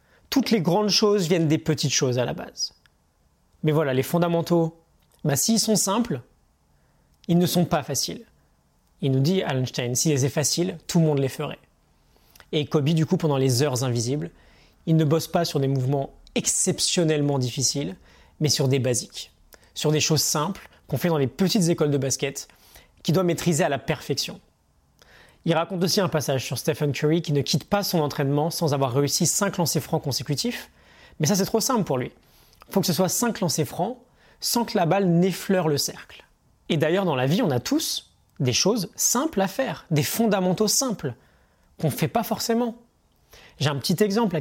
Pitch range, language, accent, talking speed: 140-185 Hz, French, French, 195 wpm